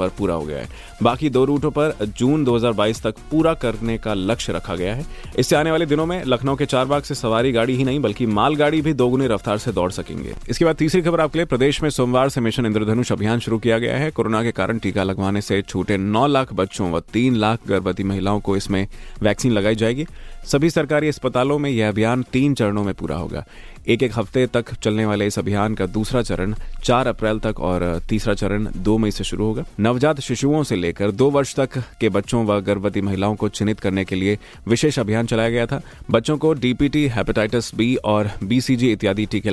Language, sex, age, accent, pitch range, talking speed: Hindi, male, 30-49, native, 105-135 Hz, 175 wpm